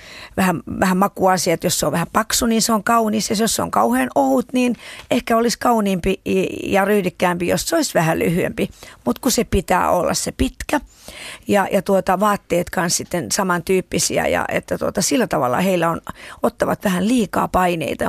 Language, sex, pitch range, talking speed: Finnish, female, 180-235 Hz, 180 wpm